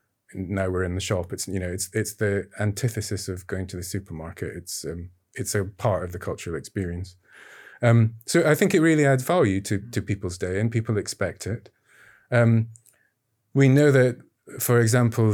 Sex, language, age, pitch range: male, Danish, 30-49, 100-115 Hz